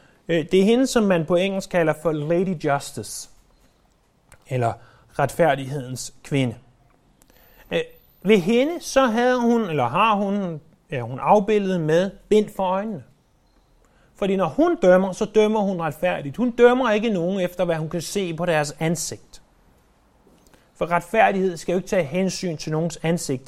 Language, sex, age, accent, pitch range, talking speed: Danish, male, 30-49, native, 135-195 Hz, 150 wpm